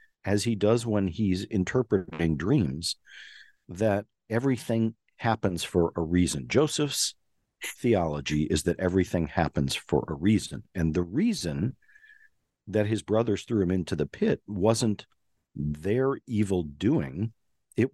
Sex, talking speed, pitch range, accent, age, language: male, 125 wpm, 85-115 Hz, American, 50-69, English